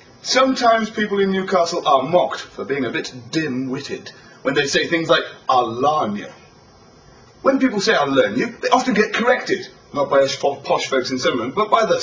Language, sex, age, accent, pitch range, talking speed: English, male, 30-49, British, 170-255 Hz, 180 wpm